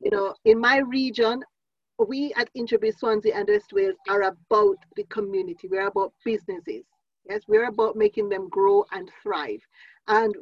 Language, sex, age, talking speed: English, female, 40-59, 160 wpm